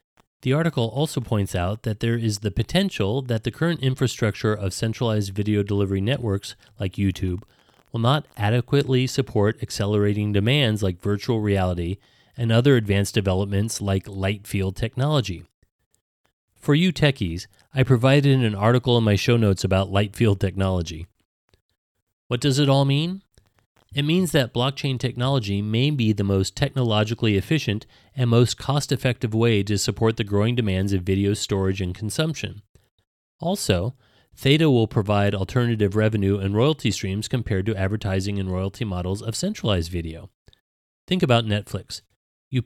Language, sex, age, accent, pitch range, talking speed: English, male, 30-49, American, 100-125 Hz, 150 wpm